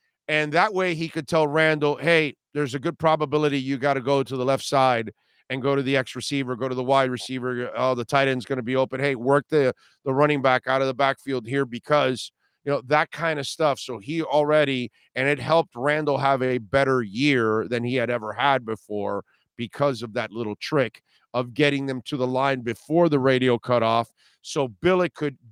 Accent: American